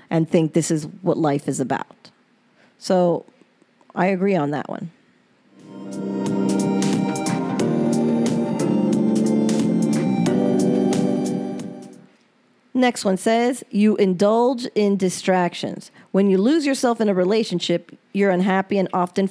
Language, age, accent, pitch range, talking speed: English, 40-59, American, 175-225 Hz, 100 wpm